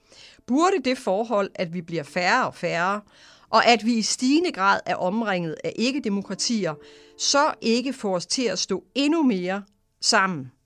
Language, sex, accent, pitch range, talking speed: English, female, Danish, 175-240 Hz, 165 wpm